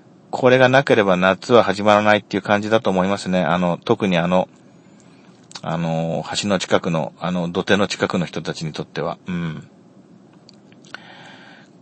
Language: Japanese